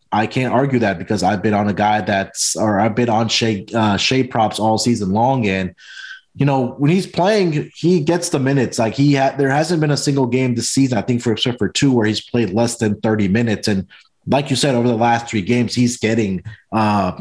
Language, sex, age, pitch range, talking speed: English, male, 30-49, 105-135 Hz, 240 wpm